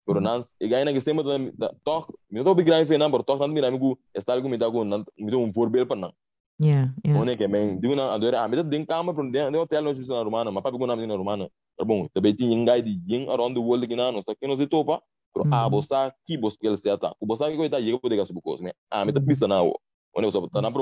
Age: 20-39